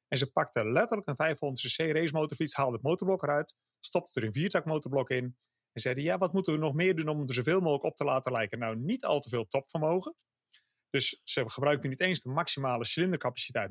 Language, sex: English, male